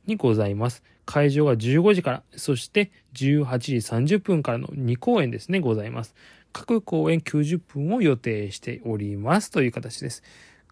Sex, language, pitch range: male, Japanese, 115-155 Hz